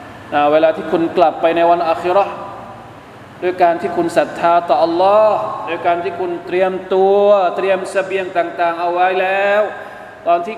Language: Thai